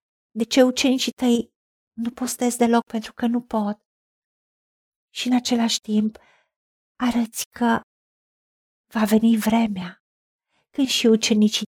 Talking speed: 120 wpm